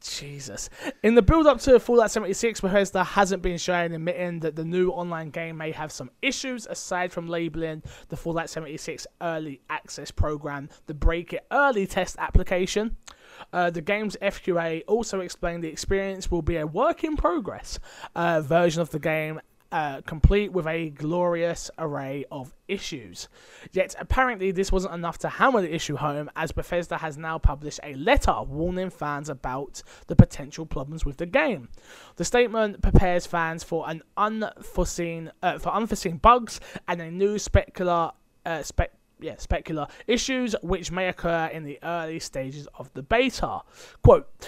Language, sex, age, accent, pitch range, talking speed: English, male, 20-39, British, 155-200 Hz, 165 wpm